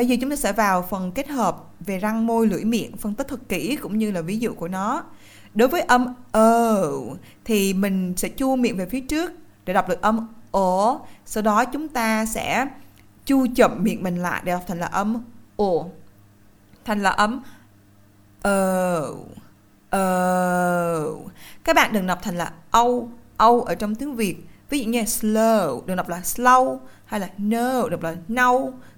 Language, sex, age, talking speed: Vietnamese, female, 20-39, 180 wpm